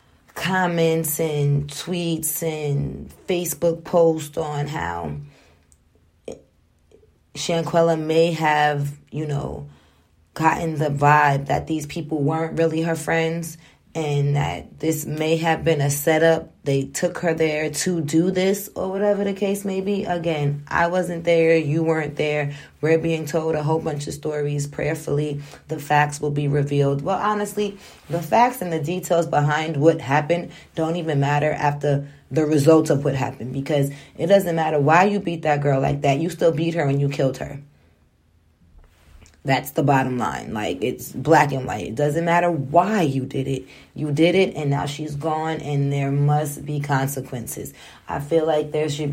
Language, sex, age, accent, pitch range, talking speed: English, female, 20-39, American, 140-165 Hz, 165 wpm